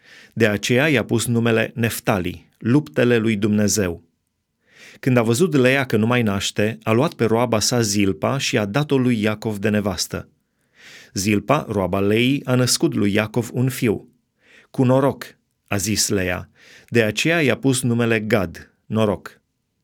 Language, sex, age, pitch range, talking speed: Romanian, male, 30-49, 110-135 Hz, 155 wpm